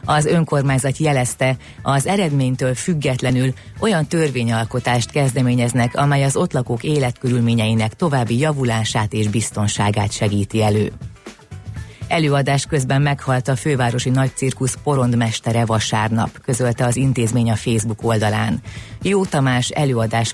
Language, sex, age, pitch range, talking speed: Hungarian, female, 30-49, 115-140 Hz, 110 wpm